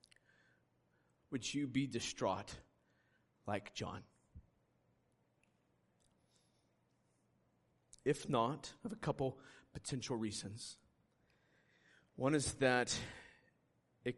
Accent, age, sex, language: American, 40-59, male, English